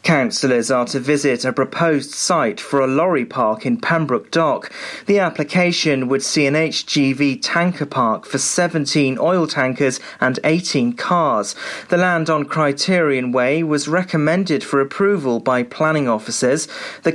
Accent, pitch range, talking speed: British, 130-160 Hz, 145 wpm